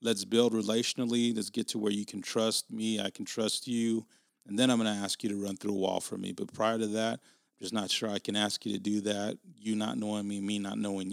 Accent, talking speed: American, 270 wpm